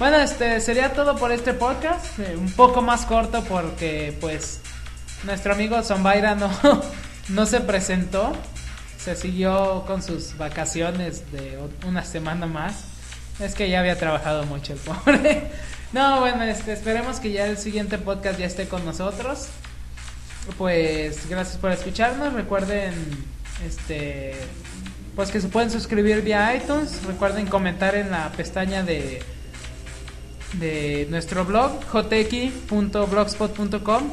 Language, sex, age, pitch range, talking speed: Spanish, male, 20-39, 145-215 Hz, 130 wpm